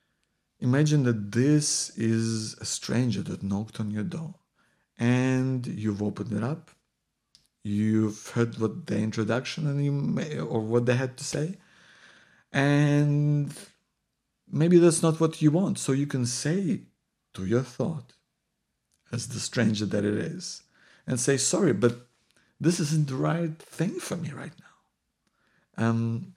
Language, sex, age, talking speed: English, male, 50-69, 145 wpm